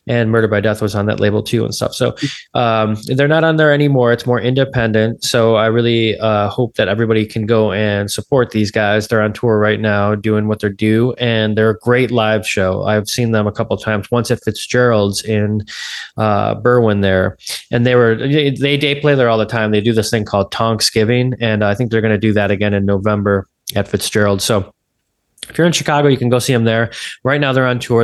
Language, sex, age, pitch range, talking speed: English, male, 20-39, 105-125 Hz, 230 wpm